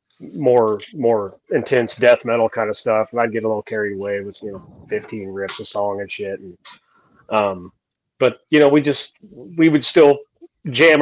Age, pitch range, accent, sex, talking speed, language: 30-49, 110-130 Hz, American, male, 190 wpm, English